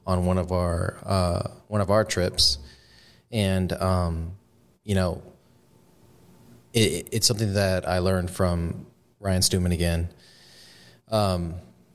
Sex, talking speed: male, 120 wpm